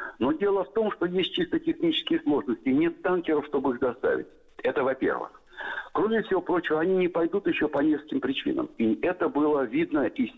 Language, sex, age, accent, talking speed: Russian, male, 60-79, native, 180 wpm